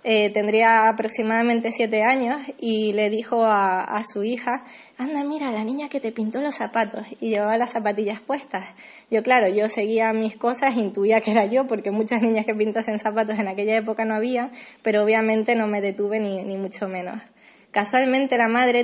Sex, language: female, Spanish